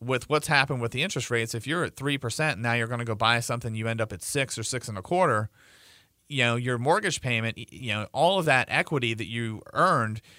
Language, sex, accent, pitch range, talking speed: English, male, American, 110-140 Hz, 250 wpm